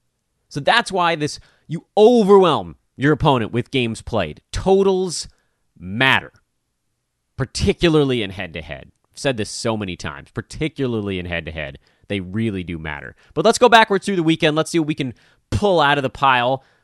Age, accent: 30-49, American